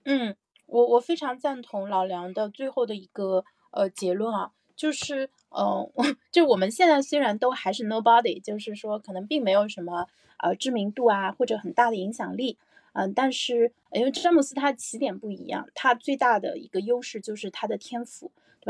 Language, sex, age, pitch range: Chinese, female, 20-39, 205-255 Hz